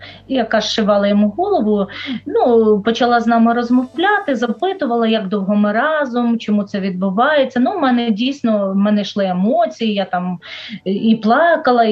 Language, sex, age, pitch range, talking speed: Ukrainian, female, 30-49, 195-245 Hz, 145 wpm